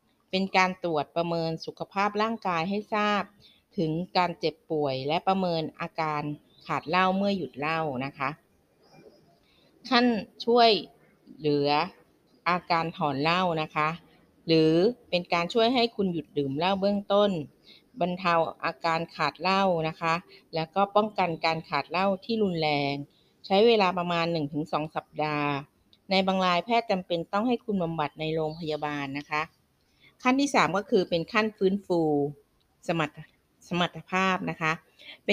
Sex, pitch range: female, 155-195 Hz